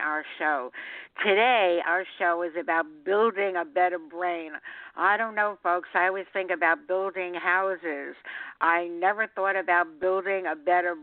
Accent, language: American, English